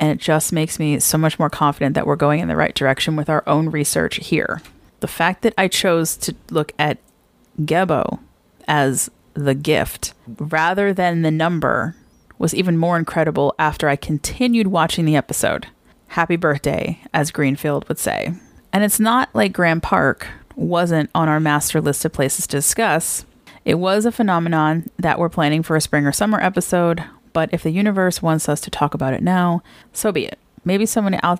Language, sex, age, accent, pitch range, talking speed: English, female, 30-49, American, 150-180 Hz, 185 wpm